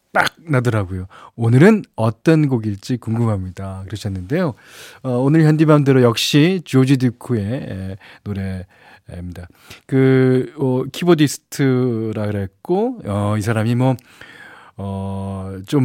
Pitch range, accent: 110-160 Hz, native